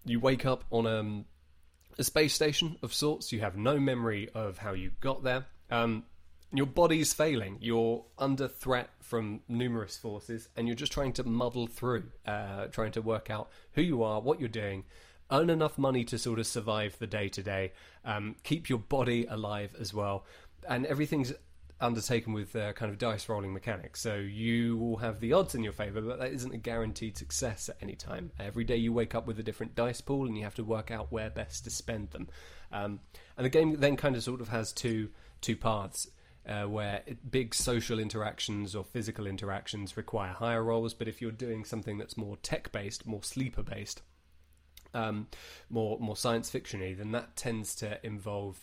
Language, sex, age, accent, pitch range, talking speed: English, male, 20-39, British, 105-120 Hz, 200 wpm